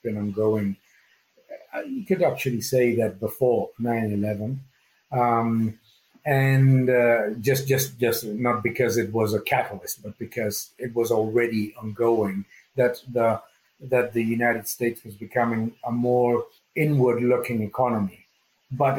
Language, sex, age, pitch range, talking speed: English, male, 50-69, 110-130 Hz, 125 wpm